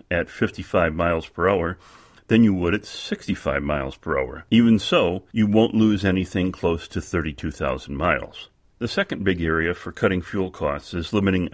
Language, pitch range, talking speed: English, 80-105 Hz, 170 wpm